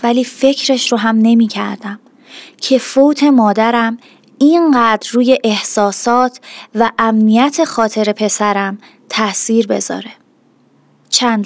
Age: 30-49